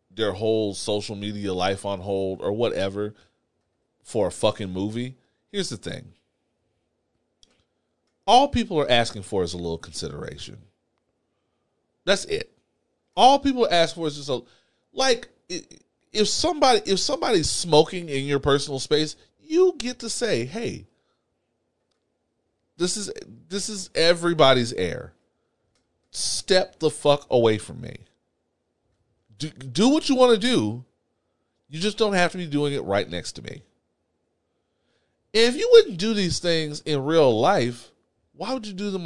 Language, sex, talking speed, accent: English, male, 145 wpm, American